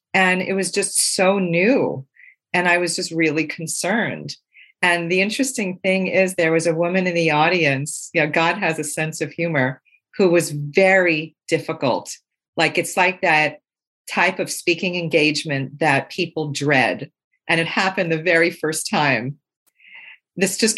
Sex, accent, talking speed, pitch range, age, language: female, American, 155 wpm, 145-180 Hz, 40-59, English